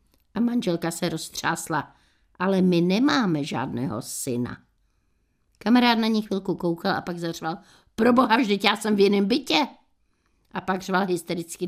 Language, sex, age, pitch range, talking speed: Czech, female, 60-79, 175-225 Hz, 150 wpm